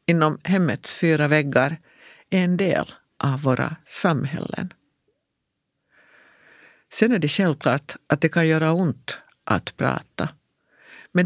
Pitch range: 145-185 Hz